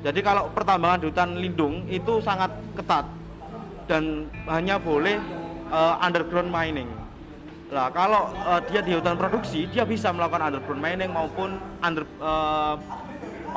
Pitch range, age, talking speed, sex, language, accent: 150-185 Hz, 30-49, 135 wpm, male, Indonesian, native